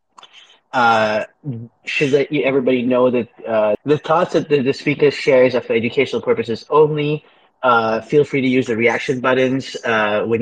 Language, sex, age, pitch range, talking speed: English, male, 30-49, 120-145 Hz, 175 wpm